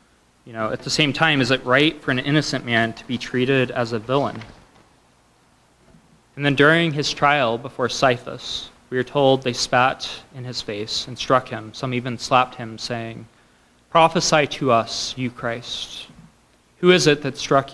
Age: 20-39